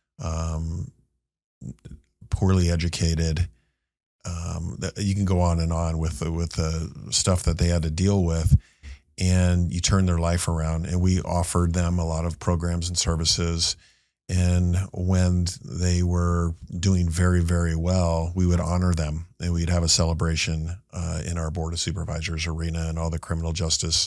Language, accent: English, American